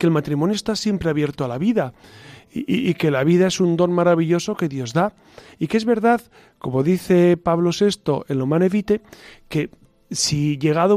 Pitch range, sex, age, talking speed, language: 150-185 Hz, male, 40-59, 195 wpm, Spanish